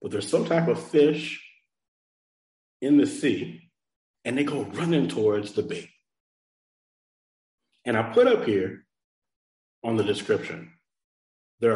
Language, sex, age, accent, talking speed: English, male, 40-59, American, 130 wpm